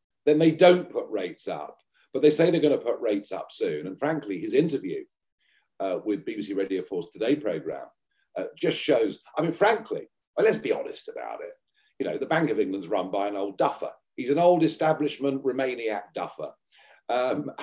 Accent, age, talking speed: British, 50-69, 195 wpm